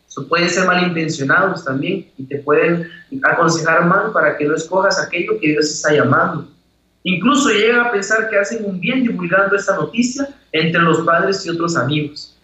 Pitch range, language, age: 150-190 Hz, Spanish, 30-49